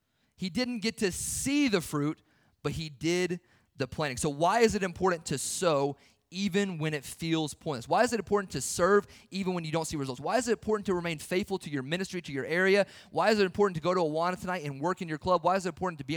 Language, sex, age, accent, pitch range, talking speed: English, male, 30-49, American, 140-195 Hz, 255 wpm